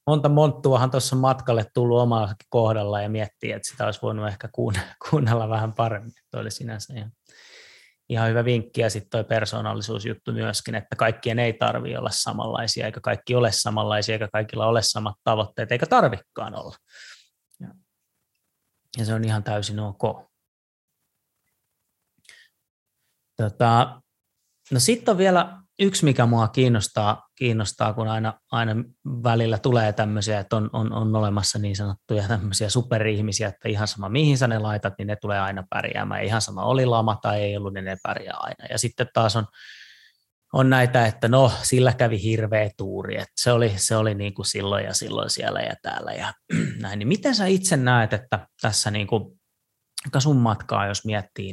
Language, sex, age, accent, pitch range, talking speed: Finnish, male, 20-39, native, 105-125 Hz, 165 wpm